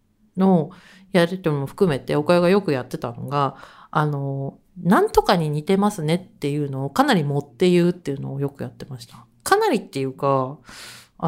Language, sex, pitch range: Japanese, female, 150-215 Hz